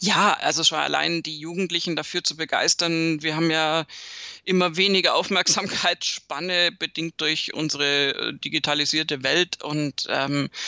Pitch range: 145-165 Hz